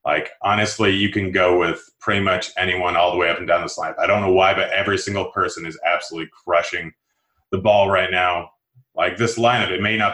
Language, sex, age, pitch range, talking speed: English, male, 30-49, 95-125 Hz, 225 wpm